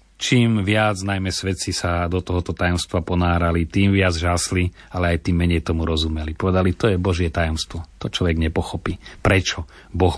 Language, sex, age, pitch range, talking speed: Slovak, male, 40-59, 90-105 Hz, 165 wpm